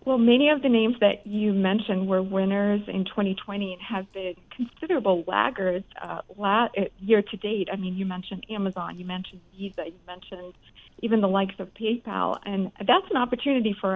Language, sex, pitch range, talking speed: English, female, 185-220 Hz, 170 wpm